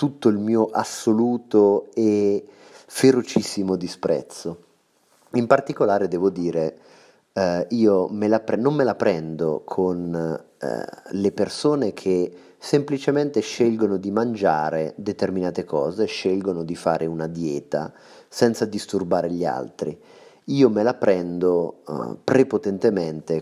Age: 30-49